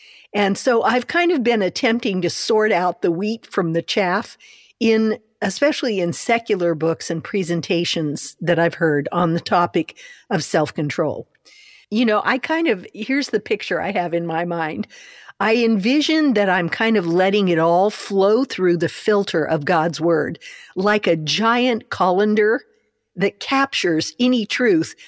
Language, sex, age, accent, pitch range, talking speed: English, female, 50-69, American, 170-225 Hz, 160 wpm